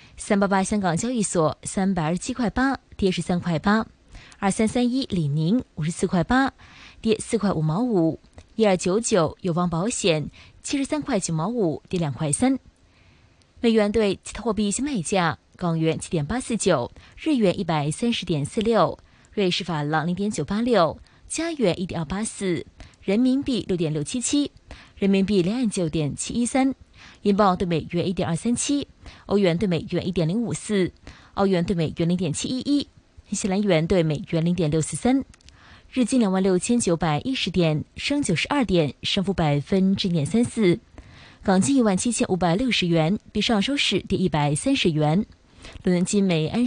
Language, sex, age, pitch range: Chinese, female, 20-39, 170-230 Hz